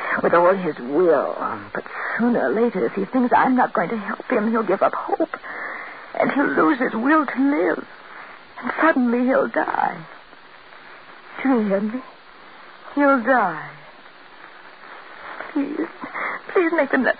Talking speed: 150 wpm